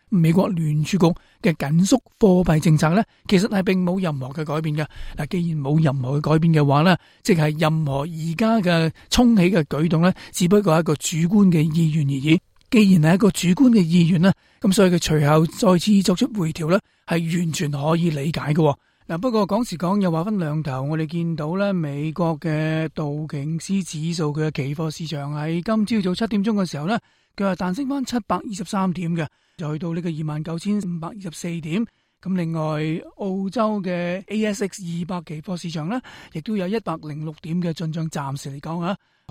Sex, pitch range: male, 155-195 Hz